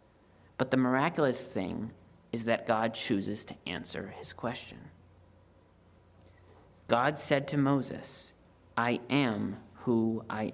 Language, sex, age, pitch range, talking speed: English, male, 30-49, 100-130 Hz, 115 wpm